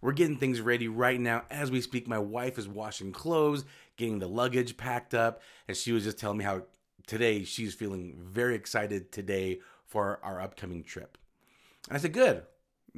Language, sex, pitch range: English, male, 105-125 Hz